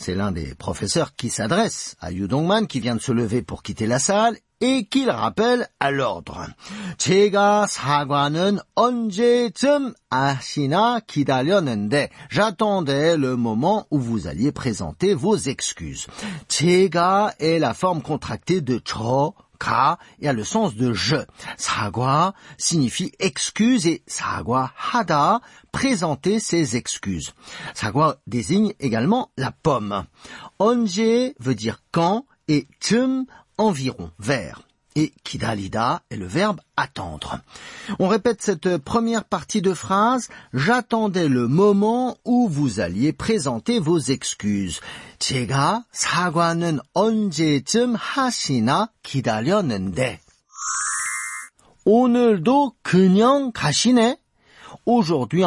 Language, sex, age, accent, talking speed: French, male, 50-69, French, 95 wpm